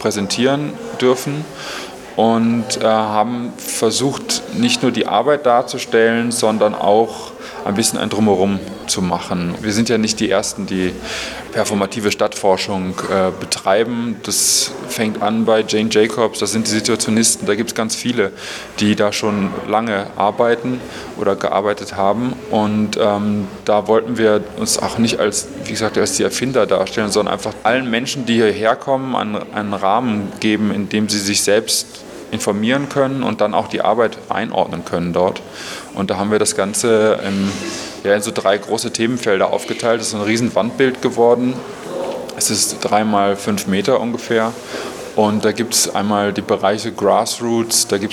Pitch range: 100-115 Hz